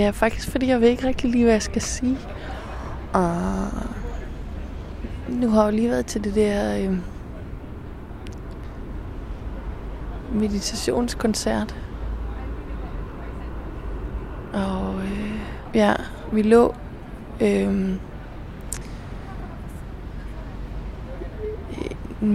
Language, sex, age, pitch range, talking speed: Danish, female, 20-39, 180-235 Hz, 85 wpm